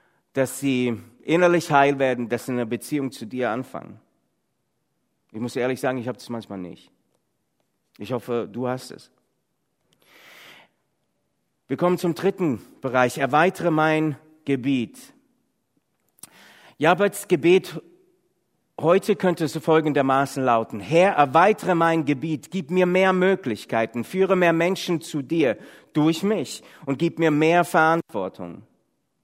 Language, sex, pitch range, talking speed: German, male, 125-170 Hz, 130 wpm